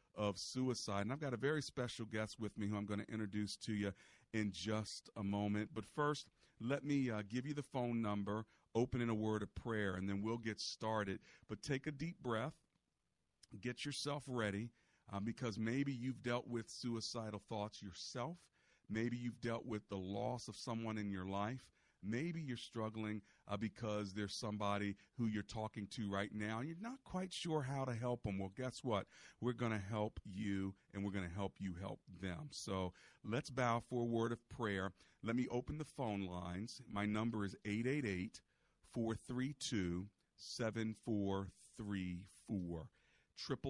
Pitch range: 100-120 Hz